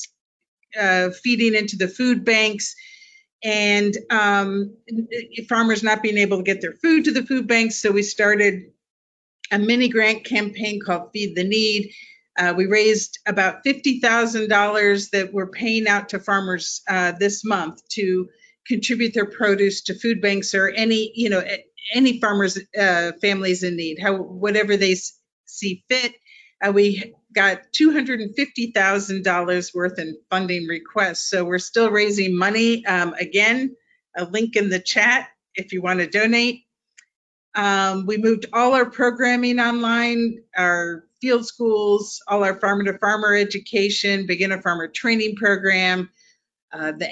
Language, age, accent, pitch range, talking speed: English, 50-69, American, 190-230 Hz, 145 wpm